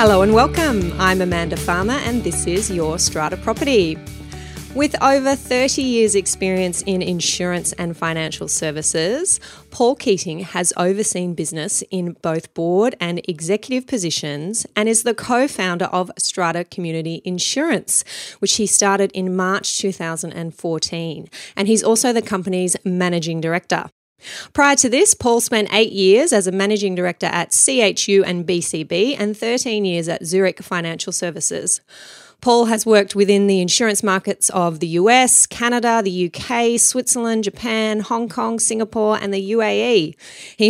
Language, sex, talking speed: English, female, 145 wpm